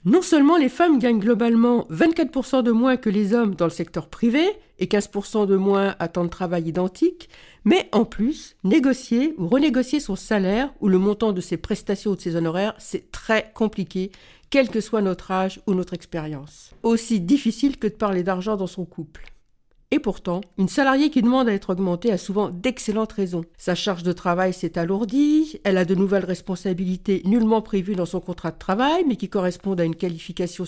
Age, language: 50-69, French